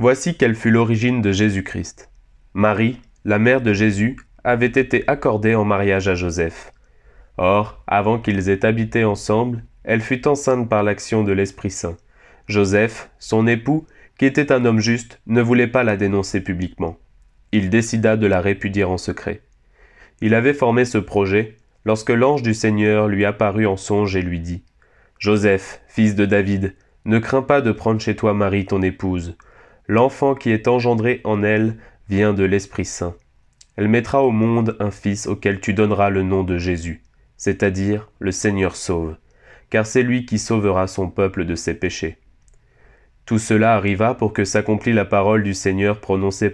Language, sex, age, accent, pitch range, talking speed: French, male, 20-39, French, 100-115 Hz, 165 wpm